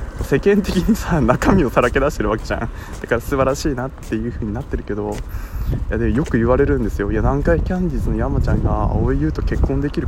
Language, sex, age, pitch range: Japanese, male, 20-39, 95-135 Hz